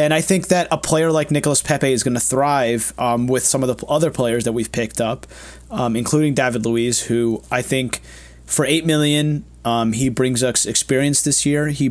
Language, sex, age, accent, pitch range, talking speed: English, male, 30-49, American, 115-140 Hz, 210 wpm